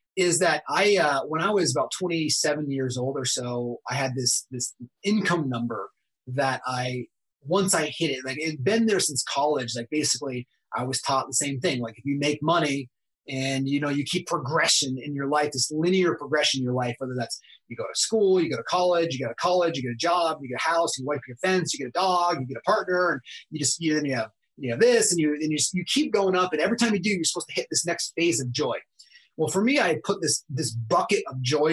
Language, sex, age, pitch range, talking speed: English, male, 30-49, 130-175 Hz, 255 wpm